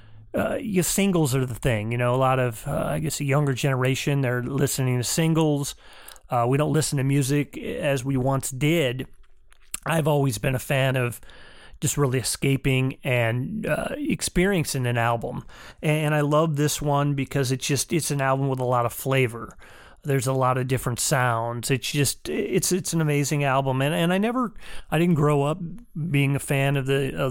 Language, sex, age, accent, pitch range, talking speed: English, male, 30-49, American, 130-150 Hz, 195 wpm